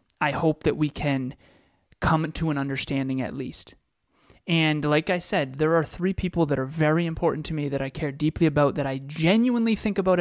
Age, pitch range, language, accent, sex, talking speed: 20-39, 145-165 Hz, English, American, male, 205 wpm